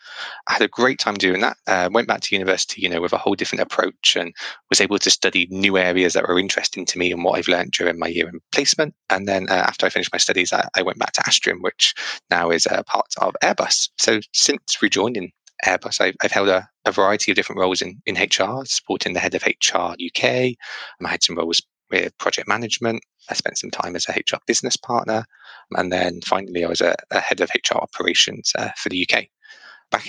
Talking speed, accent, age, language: 230 wpm, British, 20-39, English